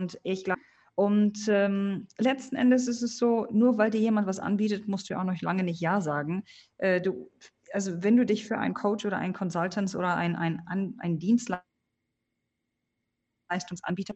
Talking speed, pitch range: 170 wpm, 160-205 Hz